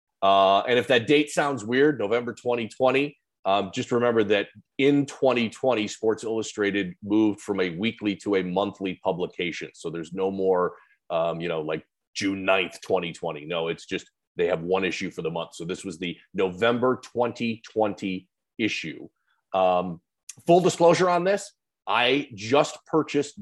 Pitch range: 100-130 Hz